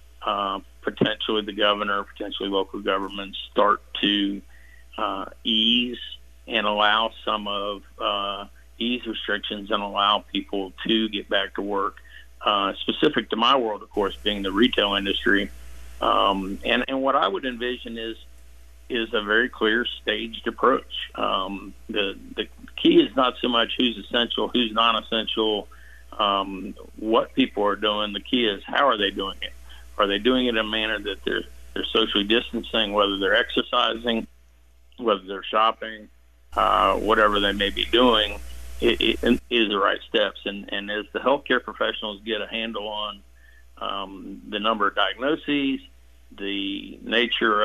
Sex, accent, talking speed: male, American, 155 wpm